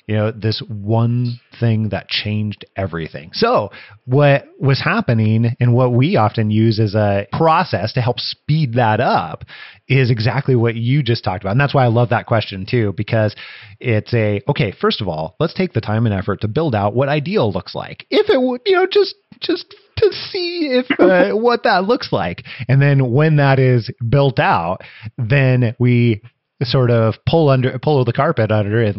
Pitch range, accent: 110-140 Hz, American